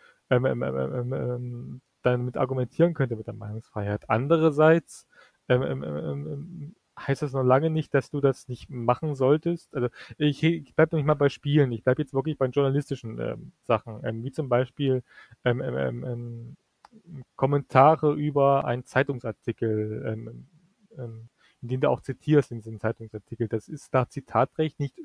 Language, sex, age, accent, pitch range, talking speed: German, male, 30-49, German, 115-150 Hz, 160 wpm